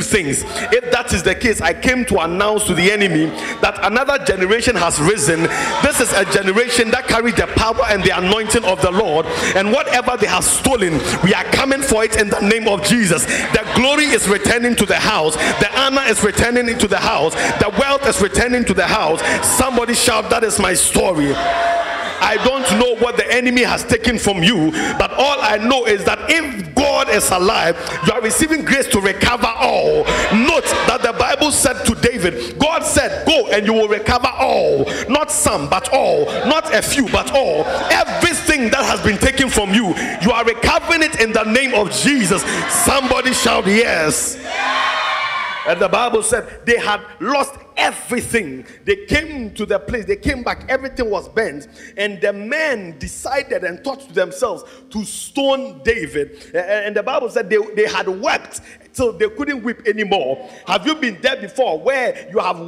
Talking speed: 185 wpm